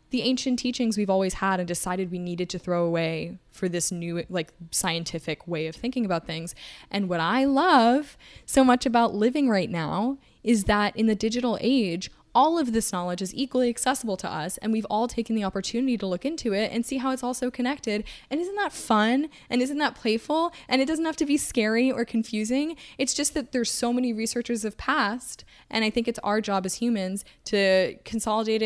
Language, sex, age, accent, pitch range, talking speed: English, female, 10-29, American, 190-255 Hz, 210 wpm